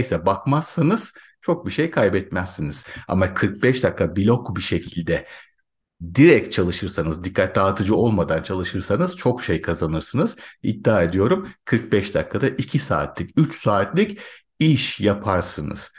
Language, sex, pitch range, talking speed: Turkish, male, 95-130 Hz, 115 wpm